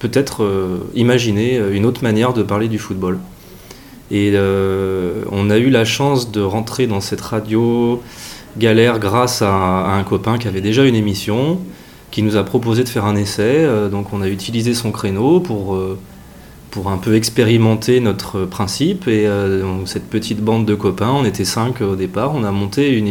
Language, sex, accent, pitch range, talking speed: French, male, French, 95-115 Hz, 185 wpm